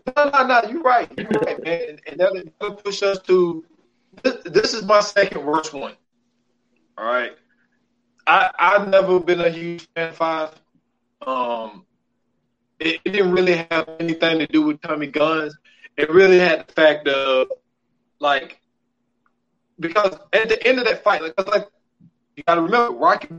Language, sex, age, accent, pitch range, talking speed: English, male, 20-39, American, 160-245 Hz, 165 wpm